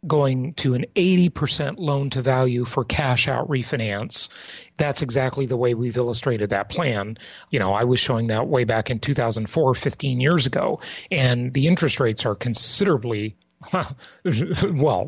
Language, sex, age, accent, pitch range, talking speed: English, male, 30-49, American, 125-165 Hz, 145 wpm